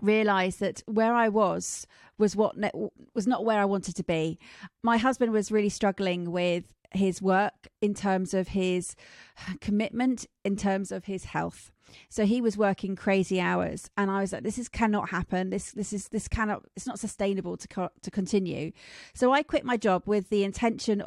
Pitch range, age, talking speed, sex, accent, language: 185-215 Hz, 30-49, 190 wpm, female, British, English